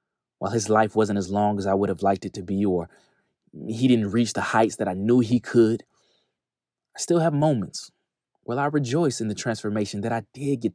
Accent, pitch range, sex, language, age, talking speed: American, 100-130 Hz, male, English, 20-39, 220 wpm